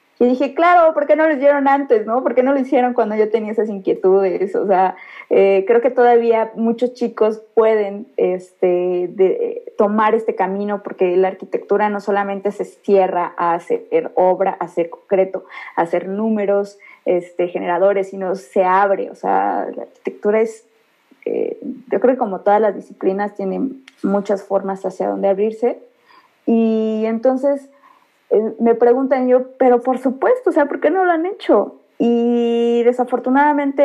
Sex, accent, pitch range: female, Mexican, 195-250 Hz